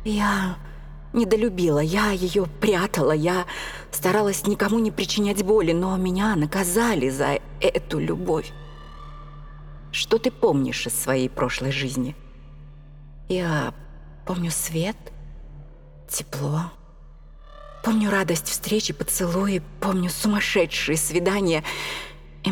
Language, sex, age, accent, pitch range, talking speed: Russian, female, 30-49, native, 145-195 Hz, 95 wpm